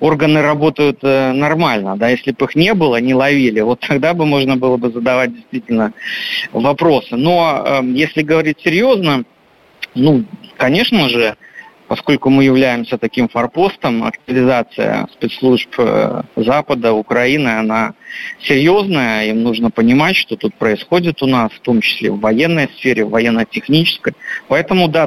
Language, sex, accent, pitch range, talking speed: Russian, male, native, 125-160 Hz, 135 wpm